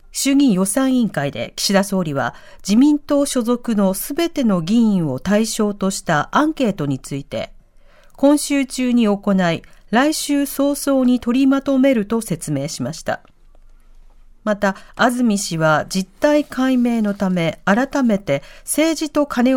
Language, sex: Japanese, female